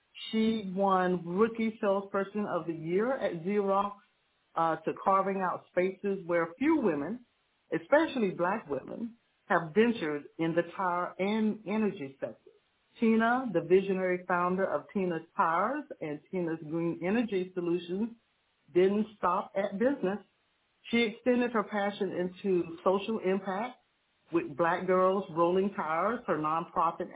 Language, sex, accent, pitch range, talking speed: English, female, American, 170-215 Hz, 130 wpm